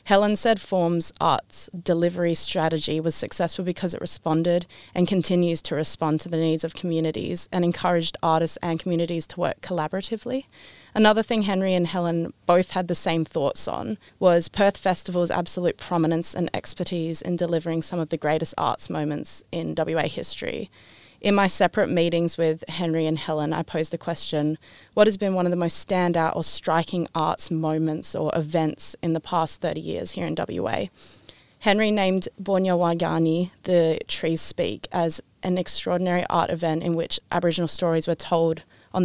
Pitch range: 160-180 Hz